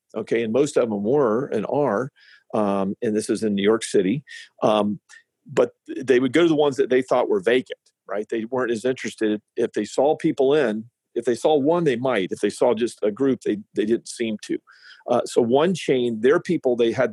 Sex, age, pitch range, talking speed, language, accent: male, 50-69, 110-165 Hz, 225 wpm, English, American